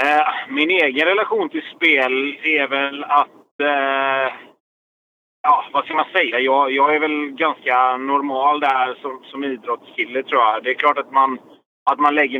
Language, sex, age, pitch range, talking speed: Swedish, male, 30-49, 130-150 Hz, 165 wpm